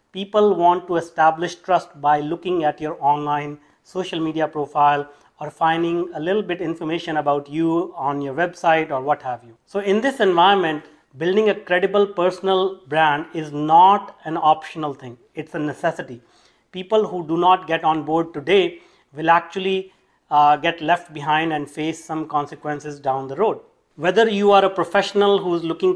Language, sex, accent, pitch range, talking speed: English, male, Indian, 155-185 Hz, 170 wpm